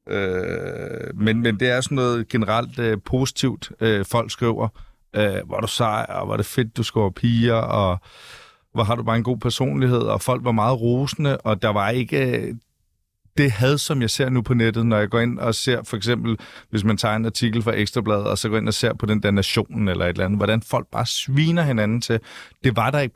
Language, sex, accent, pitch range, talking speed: Danish, male, native, 105-120 Hz, 230 wpm